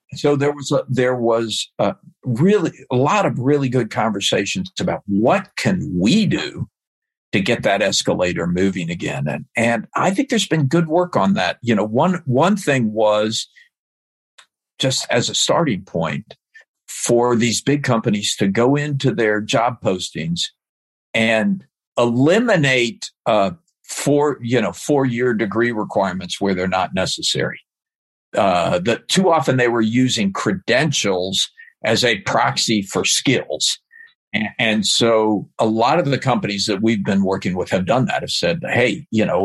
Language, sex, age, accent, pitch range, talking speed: English, male, 50-69, American, 105-145 Hz, 155 wpm